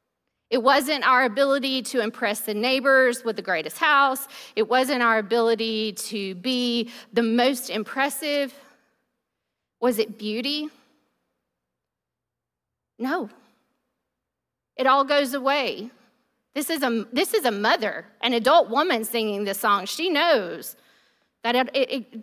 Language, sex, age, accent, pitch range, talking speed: English, female, 40-59, American, 220-275 Hz, 115 wpm